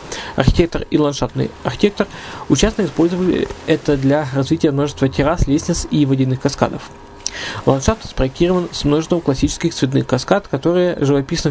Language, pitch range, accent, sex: Russian, 135-165 Hz, native, male